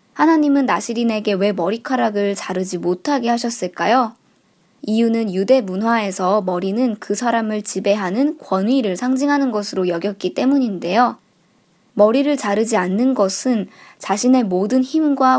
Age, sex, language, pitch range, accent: 20-39, male, Korean, 195-255 Hz, native